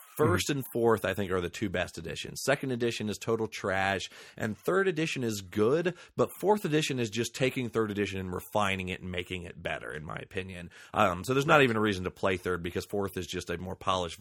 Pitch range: 95-120 Hz